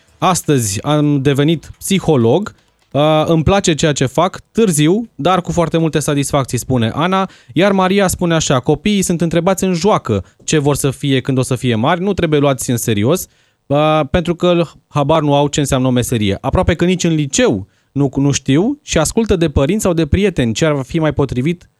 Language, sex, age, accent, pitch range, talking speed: Romanian, male, 20-39, native, 120-160 Hz, 185 wpm